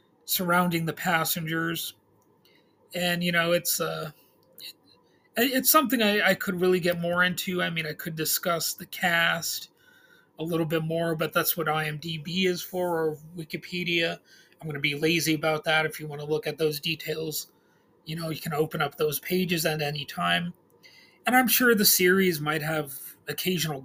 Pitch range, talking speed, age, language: 155-185 Hz, 175 wpm, 30-49, English